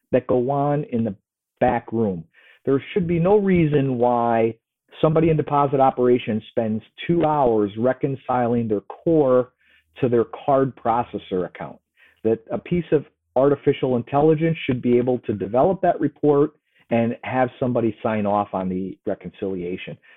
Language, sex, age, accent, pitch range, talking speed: English, male, 50-69, American, 115-155 Hz, 145 wpm